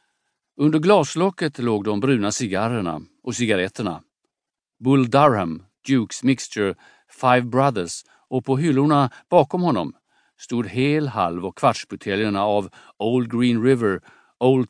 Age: 50-69